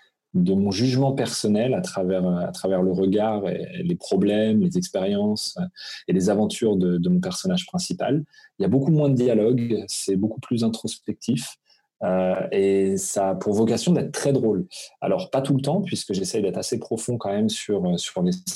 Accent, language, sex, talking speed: French, French, male, 190 wpm